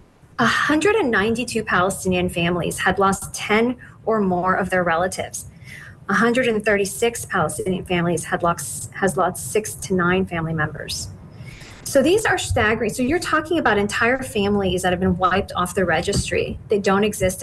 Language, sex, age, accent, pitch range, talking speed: English, female, 30-49, American, 185-220 Hz, 150 wpm